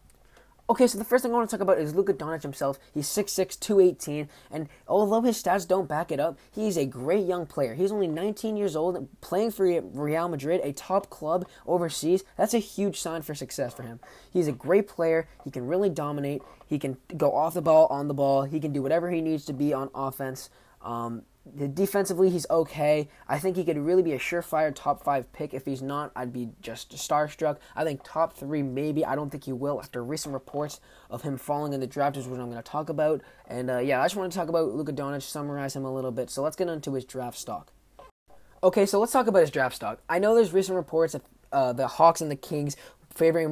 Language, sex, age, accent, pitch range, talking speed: English, male, 10-29, American, 140-180 Hz, 235 wpm